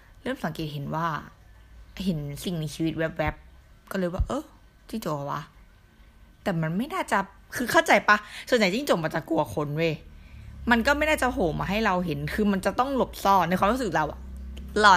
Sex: female